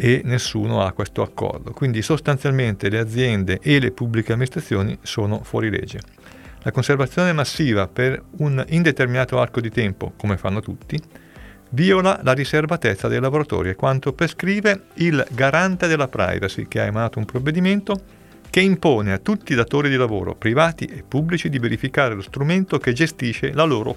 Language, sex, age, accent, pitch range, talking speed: Italian, male, 40-59, native, 110-150 Hz, 160 wpm